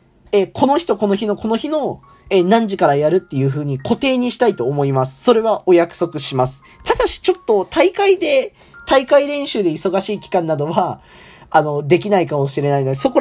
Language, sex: Japanese, male